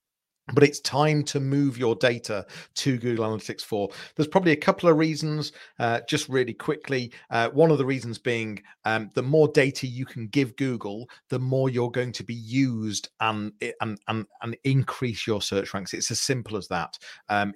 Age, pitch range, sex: 40-59, 105-130 Hz, male